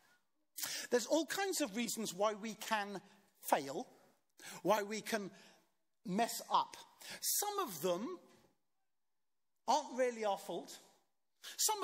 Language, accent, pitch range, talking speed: English, British, 180-250 Hz, 110 wpm